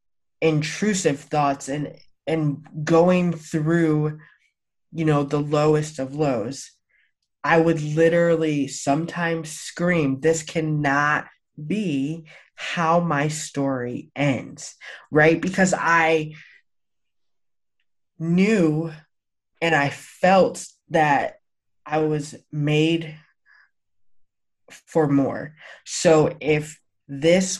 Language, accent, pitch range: English, American, 140-165 Hz